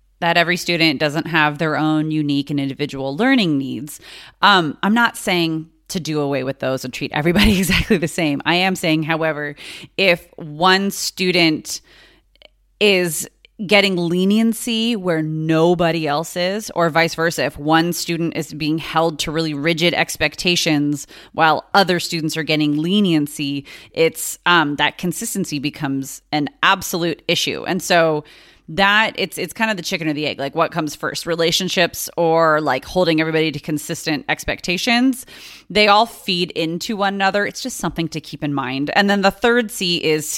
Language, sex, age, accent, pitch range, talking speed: English, female, 30-49, American, 155-190 Hz, 165 wpm